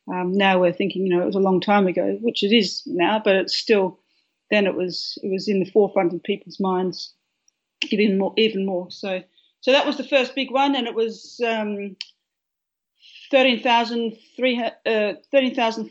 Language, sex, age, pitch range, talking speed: English, female, 40-59, 195-240 Hz, 190 wpm